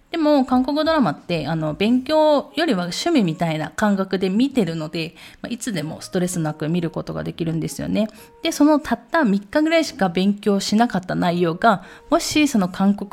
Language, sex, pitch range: Japanese, female, 165-240 Hz